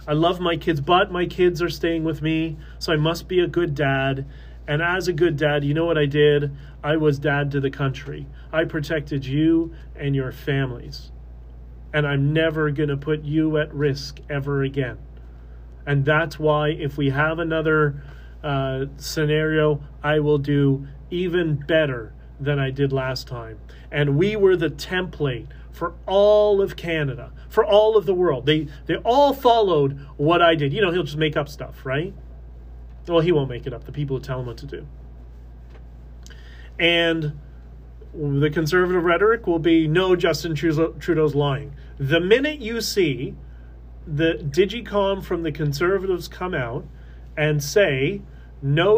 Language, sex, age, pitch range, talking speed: English, male, 30-49, 125-165 Hz, 170 wpm